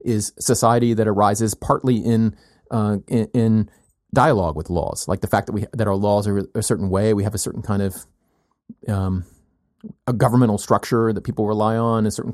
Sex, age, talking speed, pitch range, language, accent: male, 30-49, 195 wpm, 95-120 Hz, English, American